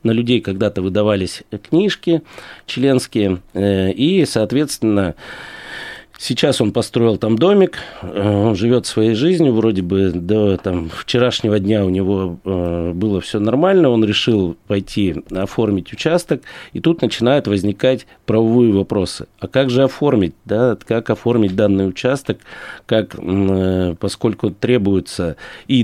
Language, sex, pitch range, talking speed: Russian, male, 95-120 Hz, 115 wpm